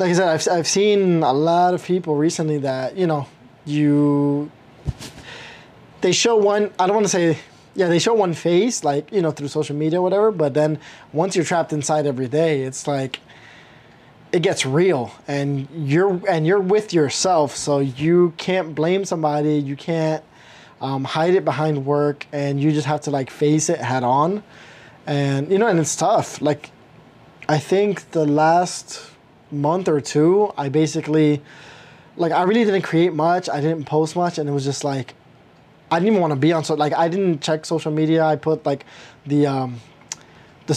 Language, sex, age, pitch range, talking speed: English, male, 20-39, 145-175 Hz, 190 wpm